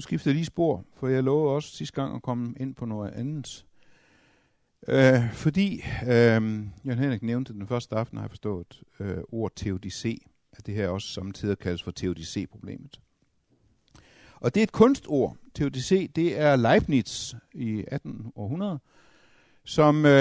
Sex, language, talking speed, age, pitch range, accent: male, Danish, 150 wpm, 60-79, 95-140 Hz, native